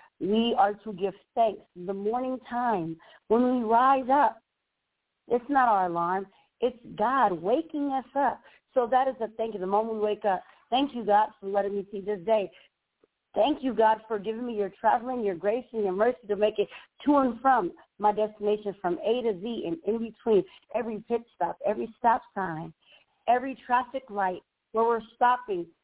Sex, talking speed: female, 190 wpm